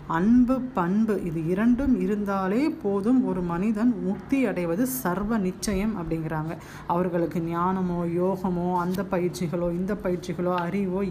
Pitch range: 175-230 Hz